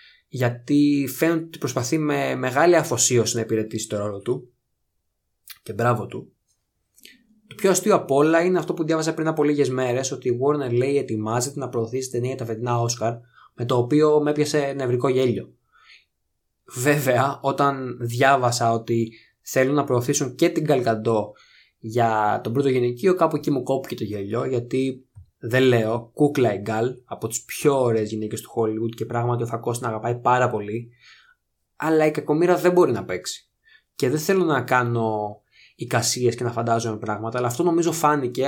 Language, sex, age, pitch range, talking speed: Greek, male, 20-39, 120-150 Hz, 165 wpm